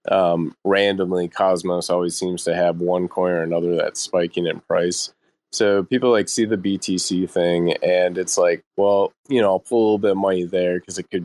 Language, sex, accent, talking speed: English, male, American, 210 wpm